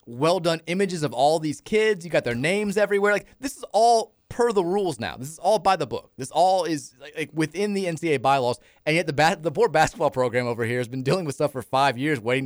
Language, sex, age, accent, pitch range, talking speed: English, male, 30-49, American, 120-165 Hz, 255 wpm